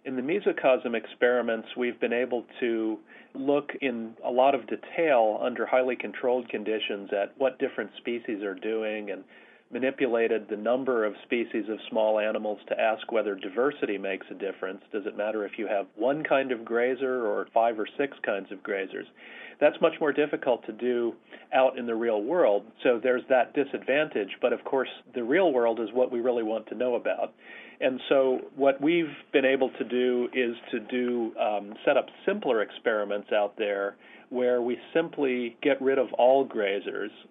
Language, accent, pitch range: English, American, 110-130 Hz